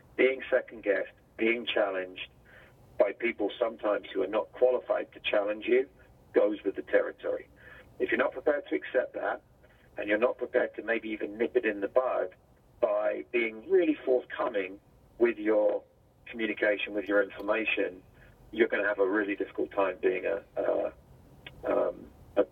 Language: English